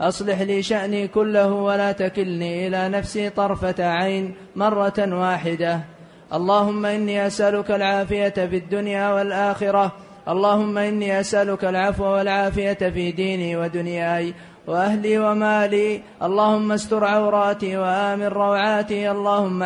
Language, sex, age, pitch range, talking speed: Arabic, male, 20-39, 185-210 Hz, 105 wpm